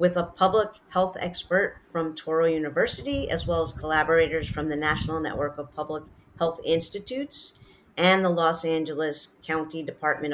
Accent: American